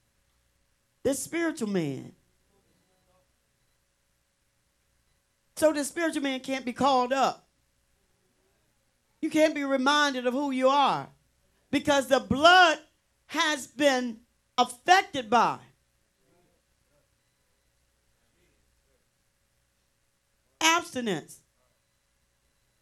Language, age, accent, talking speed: English, 40-59, American, 70 wpm